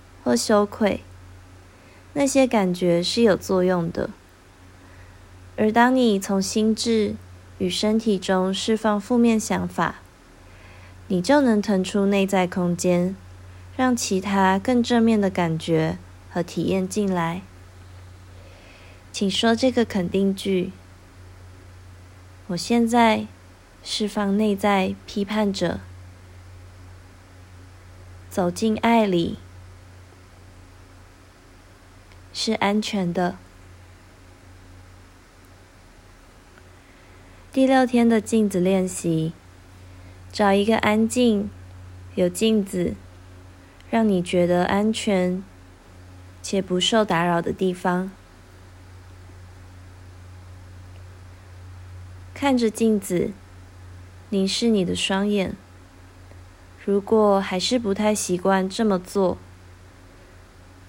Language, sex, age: Chinese, female, 20-39